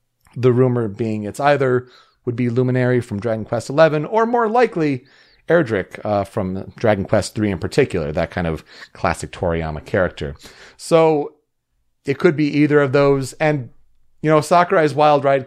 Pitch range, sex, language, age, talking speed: 120-160 Hz, male, English, 40-59, 160 wpm